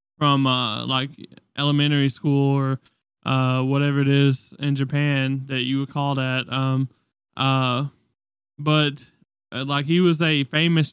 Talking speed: 135 wpm